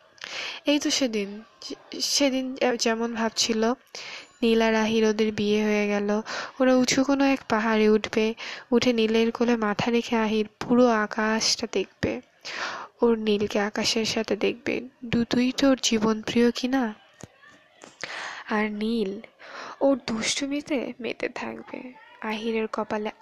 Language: Bengali